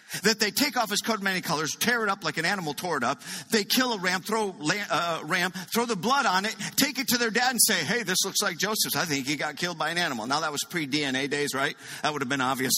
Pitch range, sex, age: 155-230 Hz, male, 50-69